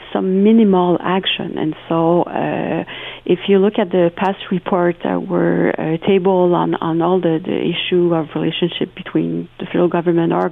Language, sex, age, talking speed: English, female, 40-59, 170 wpm